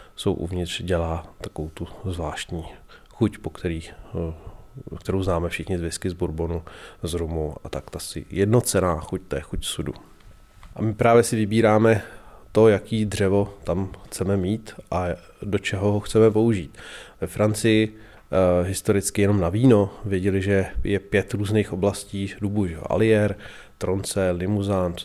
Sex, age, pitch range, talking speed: male, 30-49, 90-110 Hz, 140 wpm